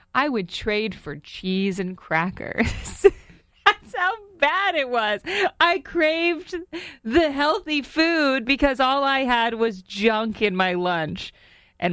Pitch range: 170-235 Hz